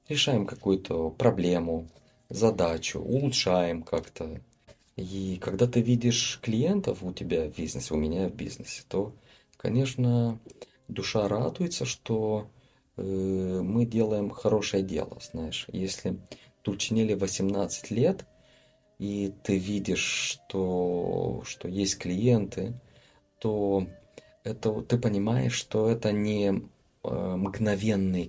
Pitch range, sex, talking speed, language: 95-120 Hz, male, 105 wpm, Russian